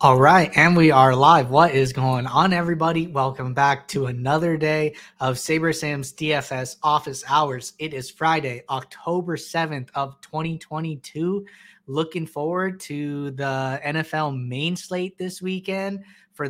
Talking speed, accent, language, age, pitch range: 140 wpm, American, English, 20-39, 140-170 Hz